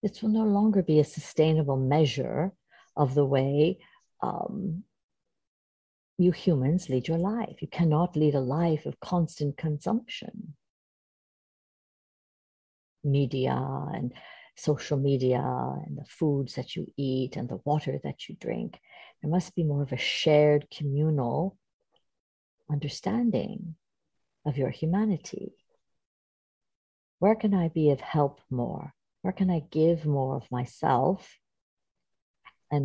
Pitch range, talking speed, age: 140-190 Hz, 125 wpm, 50-69